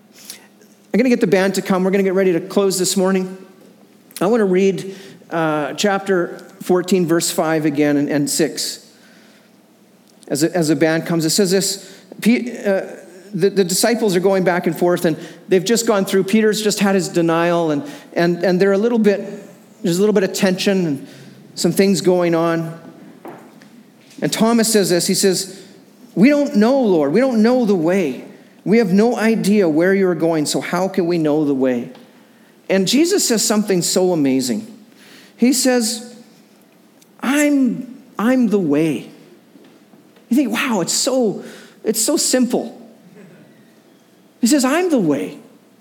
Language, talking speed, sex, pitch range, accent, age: English, 170 wpm, male, 185-245 Hz, American, 40-59